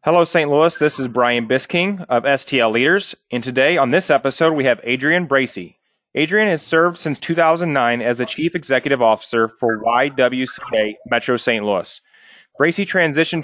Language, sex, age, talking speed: English, male, 30-49, 160 wpm